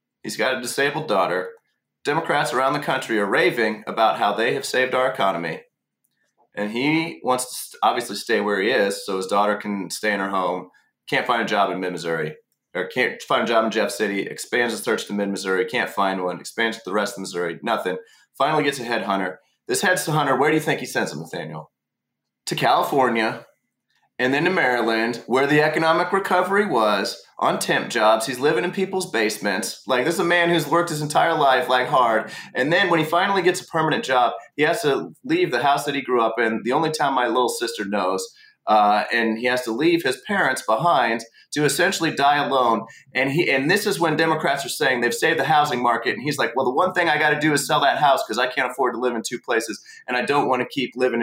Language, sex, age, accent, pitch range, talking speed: English, male, 30-49, American, 110-170 Hz, 230 wpm